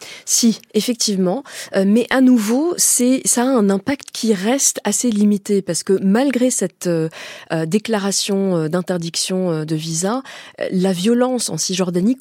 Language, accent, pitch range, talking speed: French, French, 170-210 Hz, 140 wpm